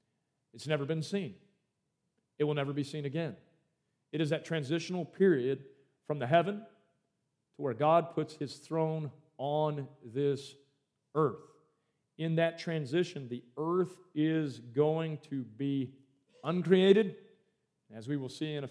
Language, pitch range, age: English, 135-160 Hz, 40-59